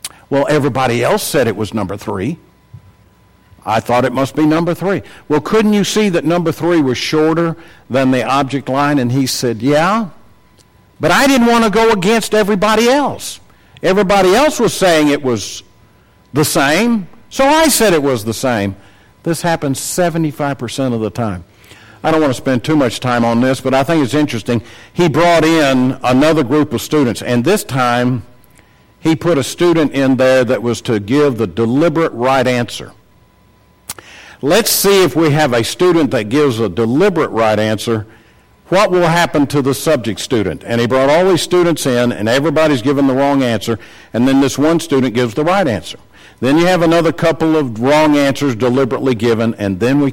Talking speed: 185 wpm